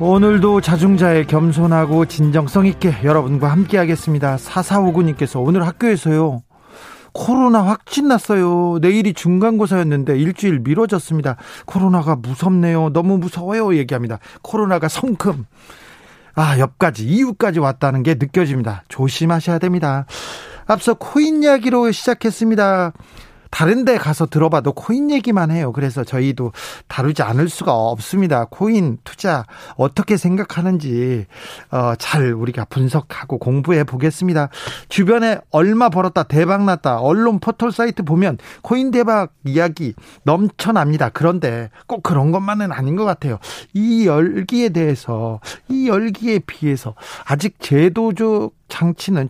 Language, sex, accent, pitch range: Korean, male, native, 140-200 Hz